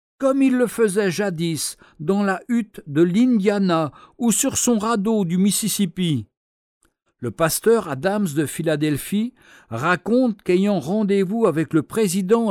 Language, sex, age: French, male, 60-79